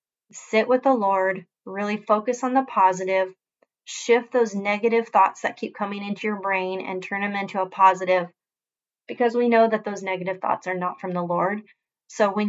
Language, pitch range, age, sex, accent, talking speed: English, 190-230 Hz, 30-49, female, American, 185 wpm